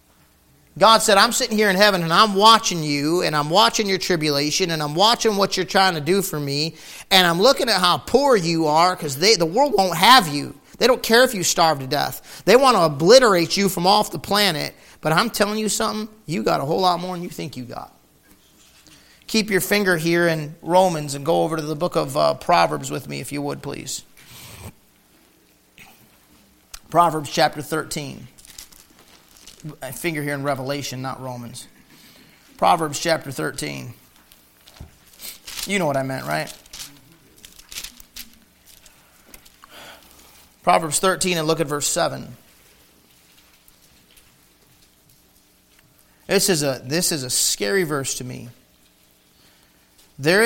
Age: 40-59